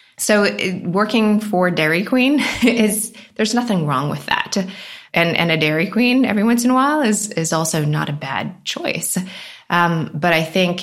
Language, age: English, 20-39